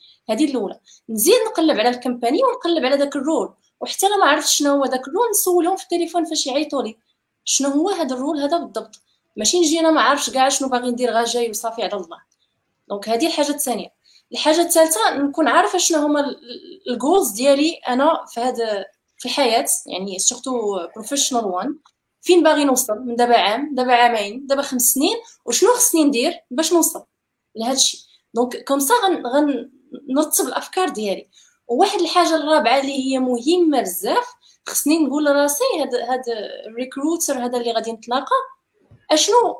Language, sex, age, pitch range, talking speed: Arabic, female, 20-39, 245-320 Hz, 160 wpm